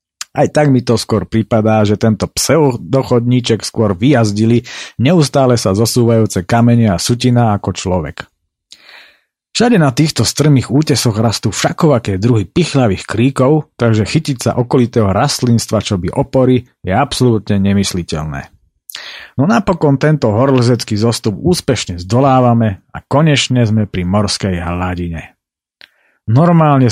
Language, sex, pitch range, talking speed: Slovak, male, 105-135 Hz, 120 wpm